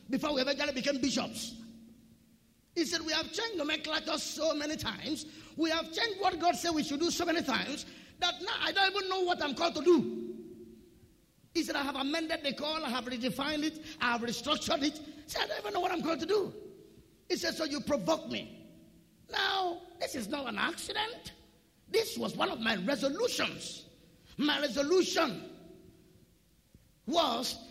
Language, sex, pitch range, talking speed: English, male, 255-330 Hz, 190 wpm